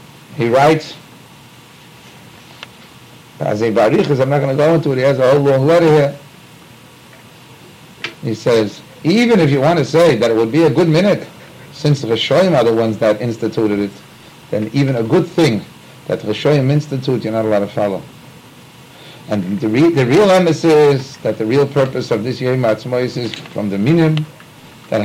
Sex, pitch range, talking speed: male, 120-155 Hz, 170 wpm